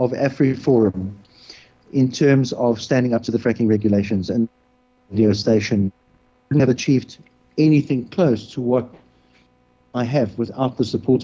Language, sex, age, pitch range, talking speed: English, male, 50-69, 115-135 Hz, 150 wpm